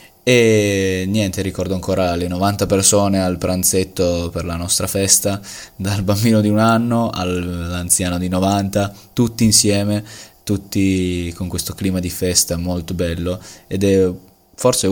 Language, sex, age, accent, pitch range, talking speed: Italian, male, 20-39, native, 90-110 Hz, 135 wpm